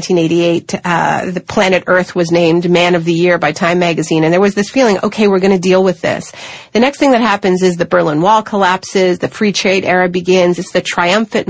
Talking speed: 230 wpm